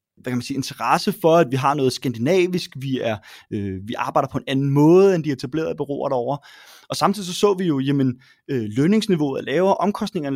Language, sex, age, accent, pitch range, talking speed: English, male, 20-39, Danish, 140-180 Hz, 210 wpm